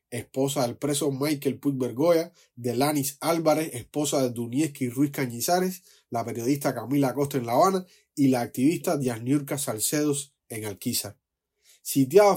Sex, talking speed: male, 135 wpm